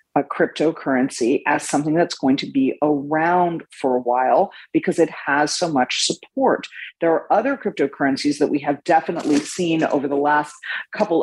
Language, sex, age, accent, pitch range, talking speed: English, female, 40-59, American, 140-190 Hz, 165 wpm